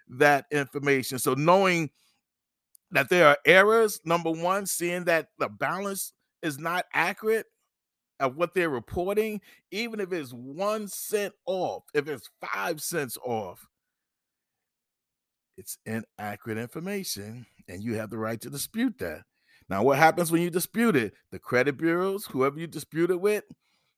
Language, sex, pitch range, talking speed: English, male, 140-185 Hz, 145 wpm